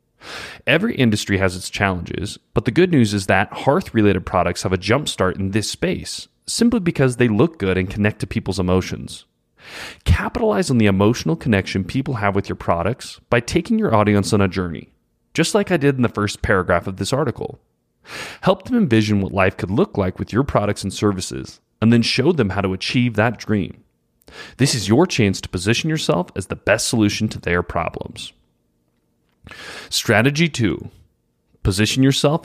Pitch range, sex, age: 95-130 Hz, male, 30-49